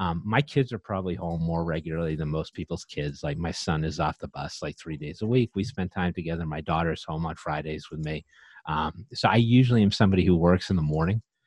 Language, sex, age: English, male, 30-49